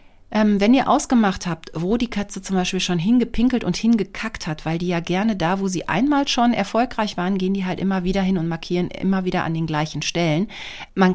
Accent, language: German, German